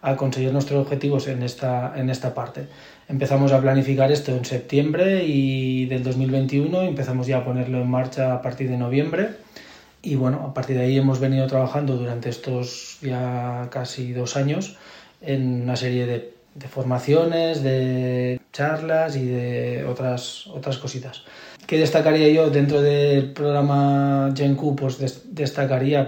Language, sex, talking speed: Spanish, male, 150 wpm